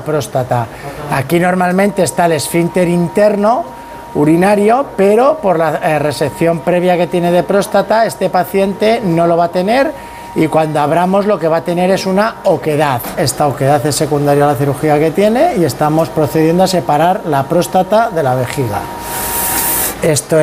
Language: Spanish